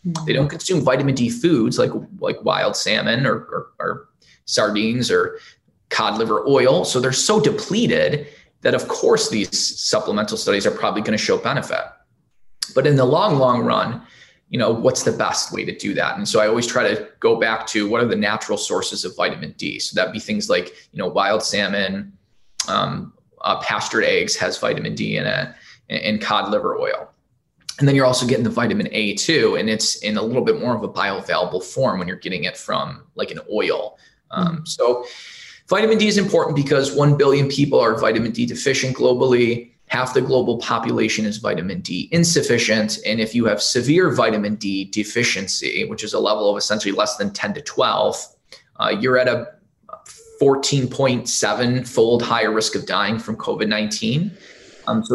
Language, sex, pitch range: English, male, 110-180 Hz